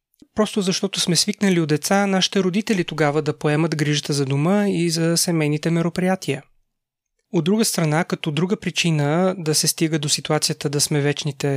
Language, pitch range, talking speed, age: Bulgarian, 155-185 Hz, 165 wpm, 30-49